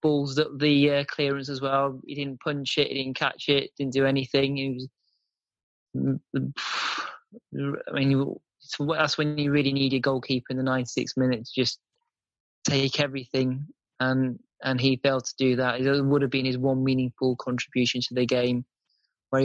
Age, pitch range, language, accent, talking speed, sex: 20-39, 130-150 Hz, English, British, 175 wpm, male